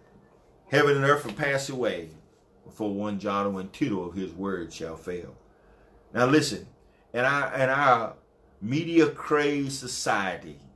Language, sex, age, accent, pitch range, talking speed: English, male, 50-69, American, 105-145 Hz, 135 wpm